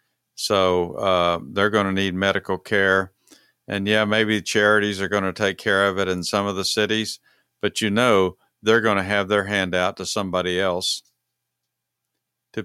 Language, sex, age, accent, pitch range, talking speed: English, male, 50-69, American, 95-110 Hz, 180 wpm